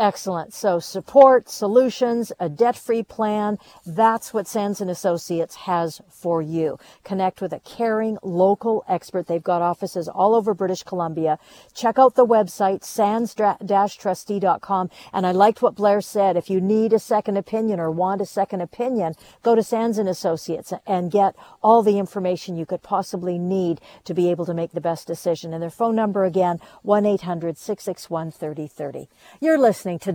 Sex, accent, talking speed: female, American, 160 wpm